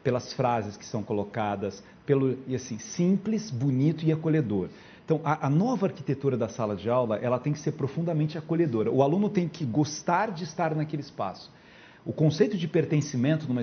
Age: 40-59